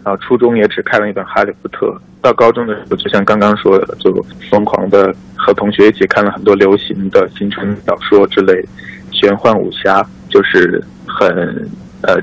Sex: male